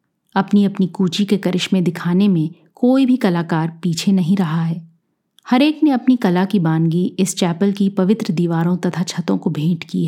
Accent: native